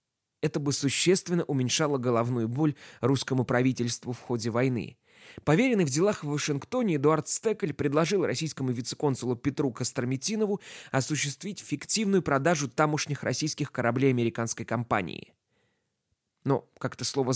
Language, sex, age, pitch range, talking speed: Russian, male, 20-39, 130-180 Hz, 120 wpm